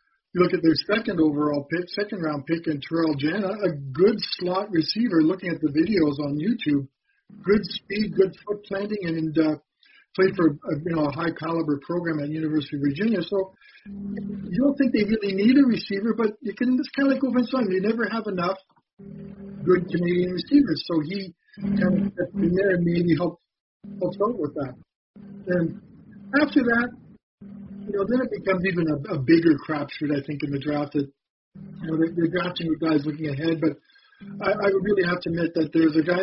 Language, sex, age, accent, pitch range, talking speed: English, male, 50-69, American, 155-200 Hz, 200 wpm